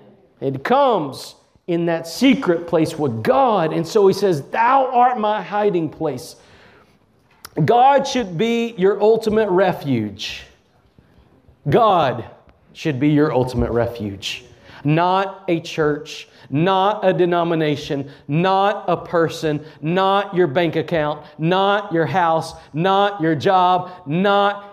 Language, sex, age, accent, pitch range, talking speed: English, male, 40-59, American, 145-205 Hz, 120 wpm